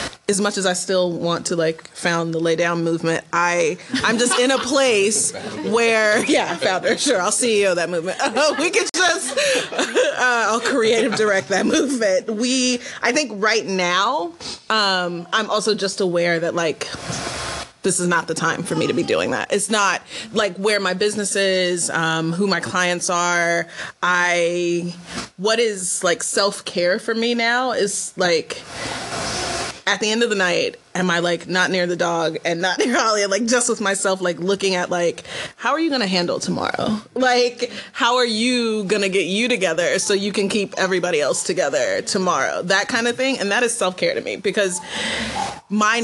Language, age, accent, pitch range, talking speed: English, 30-49, American, 180-240 Hz, 190 wpm